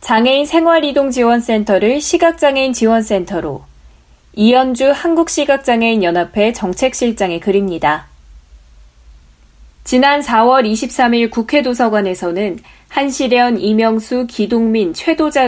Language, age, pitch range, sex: Korean, 20-39, 190-260 Hz, female